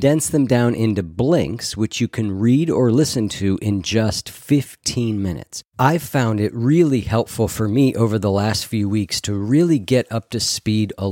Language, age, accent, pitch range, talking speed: English, 40-59, American, 95-120 Hz, 190 wpm